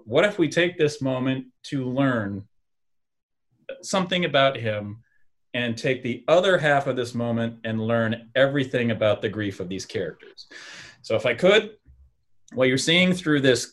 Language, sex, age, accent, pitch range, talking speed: English, male, 30-49, American, 120-160 Hz, 160 wpm